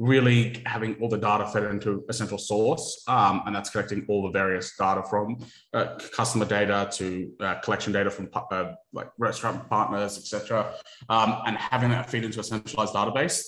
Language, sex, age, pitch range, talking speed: English, male, 20-39, 100-115 Hz, 185 wpm